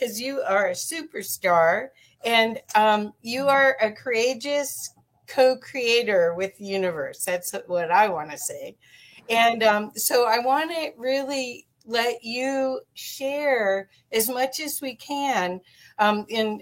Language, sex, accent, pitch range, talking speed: English, female, American, 180-245 Hz, 135 wpm